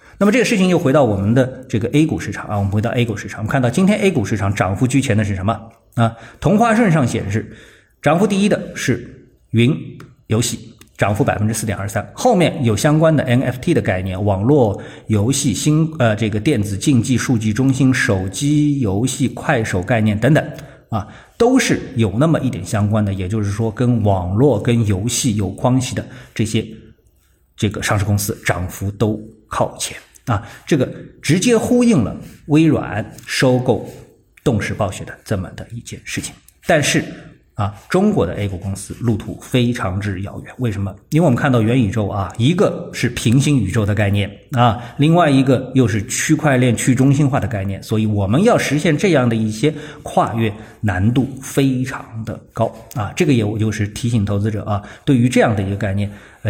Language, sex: Chinese, male